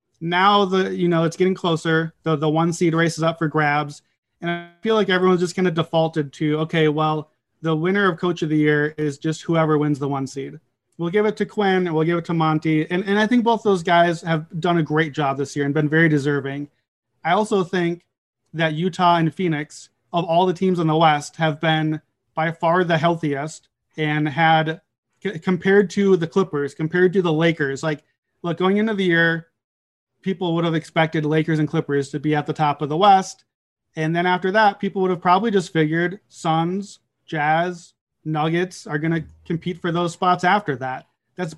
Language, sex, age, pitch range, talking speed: English, male, 30-49, 155-185 Hz, 210 wpm